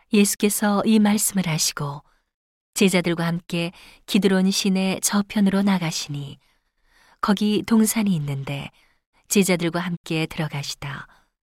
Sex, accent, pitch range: female, native, 155-200 Hz